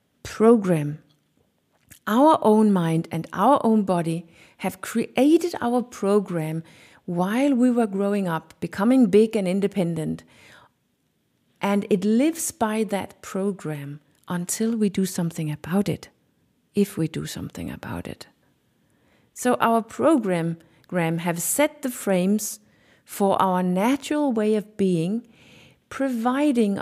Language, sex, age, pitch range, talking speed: English, female, 50-69, 180-245 Hz, 120 wpm